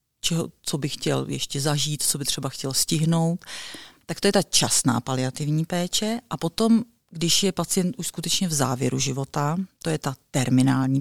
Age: 40-59